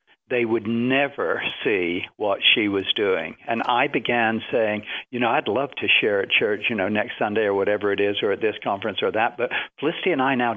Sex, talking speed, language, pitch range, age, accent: male, 220 wpm, English, 105-125 Hz, 60-79, American